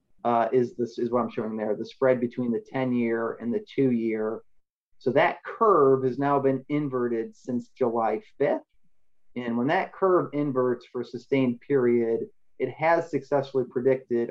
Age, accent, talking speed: 30-49, American, 165 wpm